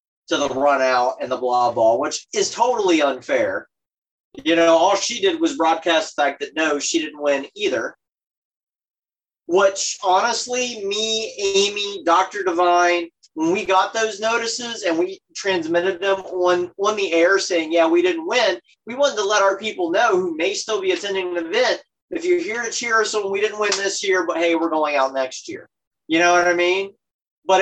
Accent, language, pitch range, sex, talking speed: American, English, 165-225 Hz, male, 195 wpm